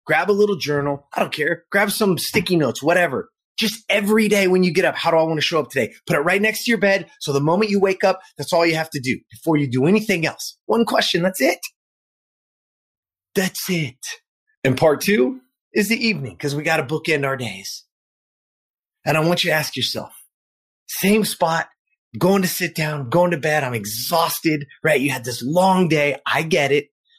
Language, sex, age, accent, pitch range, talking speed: English, male, 30-49, American, 135-185 Hz, 215 wpm